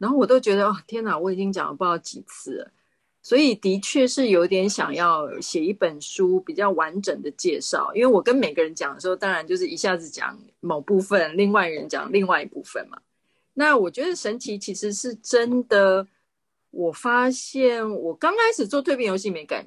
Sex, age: female, 30-49